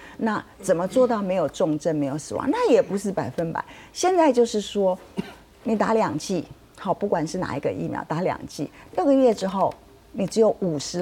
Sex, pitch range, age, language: female, 175-255 Hz, 50-69, Chinese